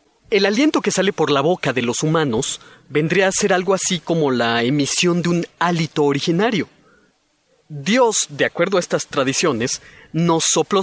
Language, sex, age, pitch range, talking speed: Spanish, male, 30-49, 145-185 Hz, 165 wpm